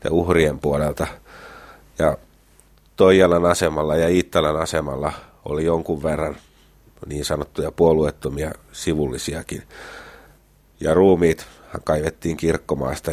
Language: Finnish